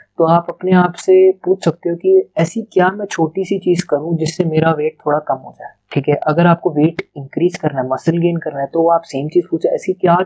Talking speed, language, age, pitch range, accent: 245 wpm, Hindi, 20-39, 135-170 Hz, native